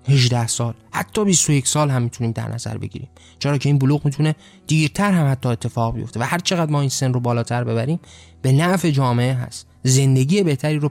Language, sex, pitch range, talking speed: Persian, male, 120-155 Hz, 200 wpm